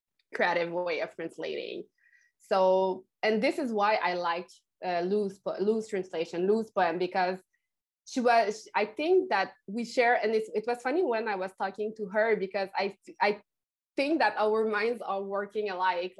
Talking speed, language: 180 wpm, English